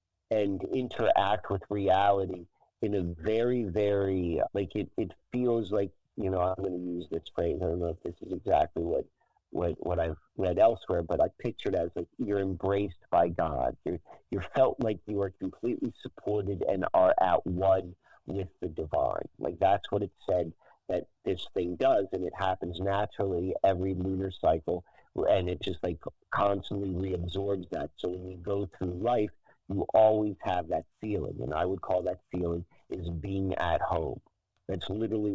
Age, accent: 50-69, American